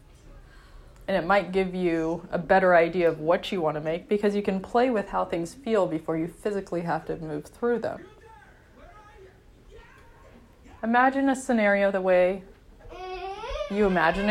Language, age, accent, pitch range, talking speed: English, 20-39, American, 170-235 Hz, 155 wpm